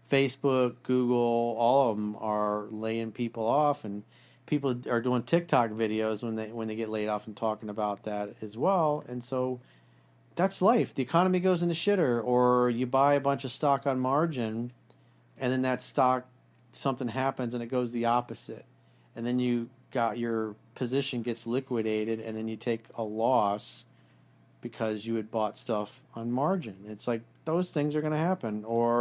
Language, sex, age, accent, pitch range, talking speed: English, male, 40-59, American, 110-135 Hz, 185 wpm